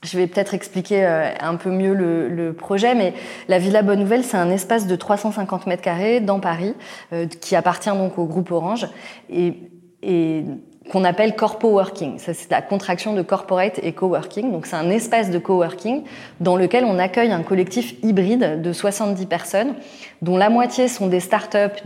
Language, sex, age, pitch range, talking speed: French, female, 20-39, 175-215 Hz, 180 wpm